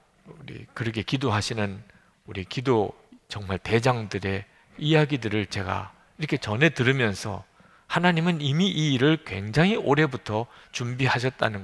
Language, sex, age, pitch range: Korean, male, 50-69, 110-170 Hz